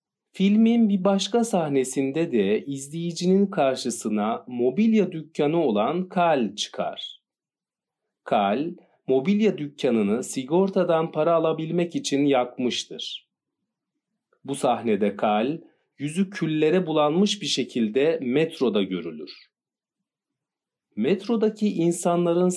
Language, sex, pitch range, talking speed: Turkish, male, 135-185 Hz, 85 wpm